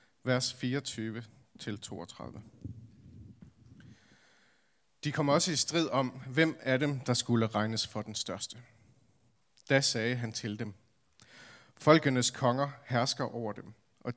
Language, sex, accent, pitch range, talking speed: Danish, male, native, 110-135 Hz, 120 wpm